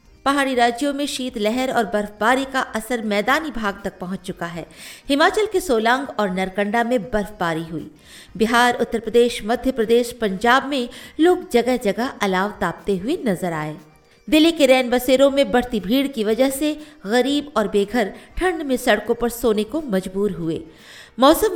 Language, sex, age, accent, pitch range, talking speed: Hindi, female, 50-69, native, 210-270 Hz, 165 wpm